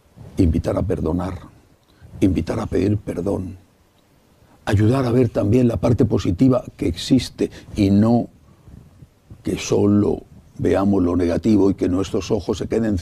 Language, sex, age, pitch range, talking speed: English, male, 60-79, 100-125 Hz, 135 wpm